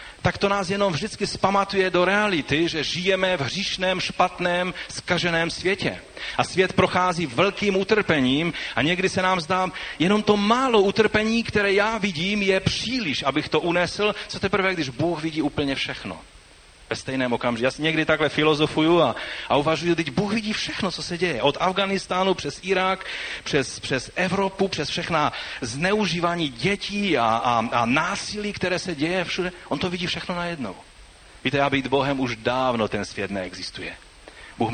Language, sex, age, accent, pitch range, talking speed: Czech, male, 40-59, native, 110-180 Hz, 170 wpm